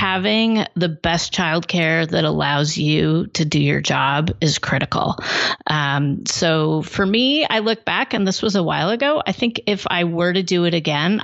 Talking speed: 190 wpm